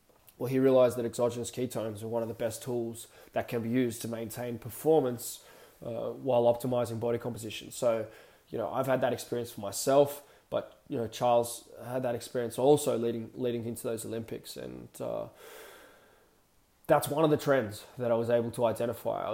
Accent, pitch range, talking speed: Australian, 115-130 Hz, 185 wpm